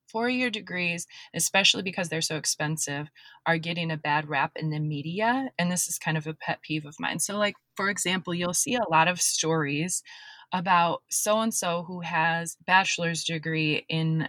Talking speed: 175 wpm